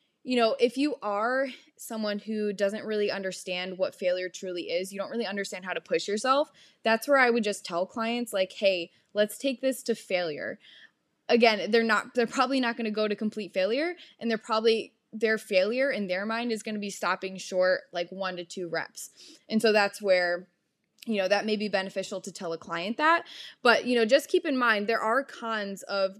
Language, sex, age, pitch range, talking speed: English, female, 10-29, 190-235 Hz, 215 wpm